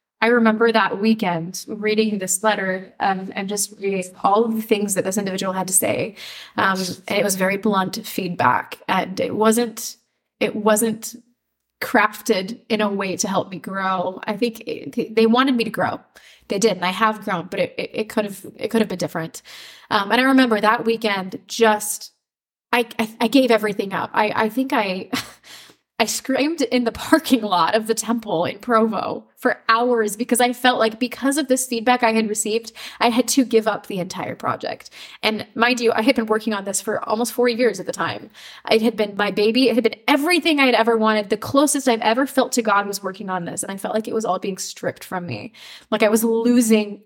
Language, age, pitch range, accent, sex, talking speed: English, 20-39, 200-240 Hz, American, female, 215 wpm